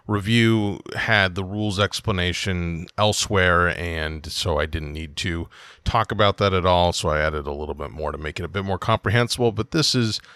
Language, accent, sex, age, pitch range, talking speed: English, American, male, 30-49, 90-125 Hz, 195 wpm